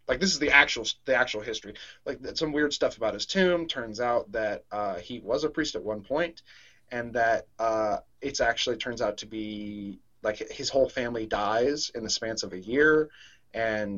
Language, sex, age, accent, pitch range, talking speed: English, male, 20-39, American, 110-150 Hz, 200 wpm